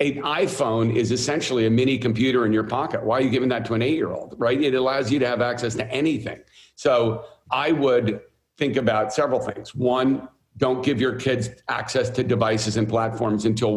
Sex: male